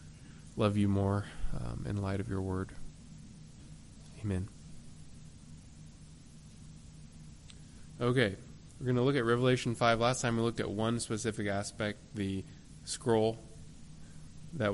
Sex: male